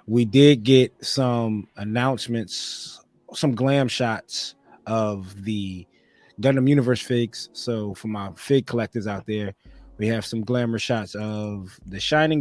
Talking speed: 135 wpm